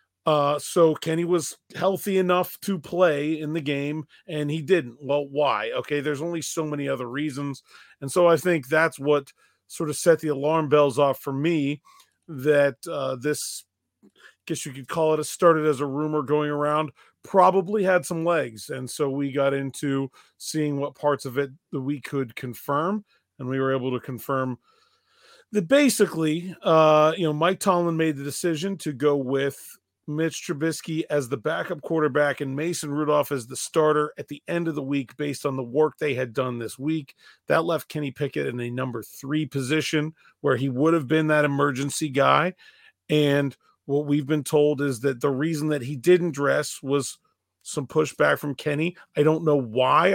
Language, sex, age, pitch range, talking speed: English, male, 40-59, 140-165 Hz, 190 wpm